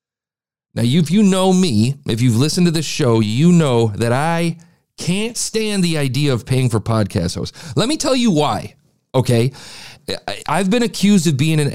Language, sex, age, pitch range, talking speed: English, male, 40-59, 110-150 Hz, 185 wpm